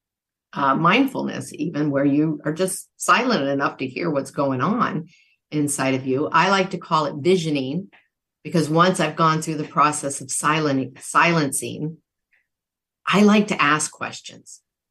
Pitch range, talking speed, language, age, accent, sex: 145-190 Hz, 150 wpm, English, 50-69, American, female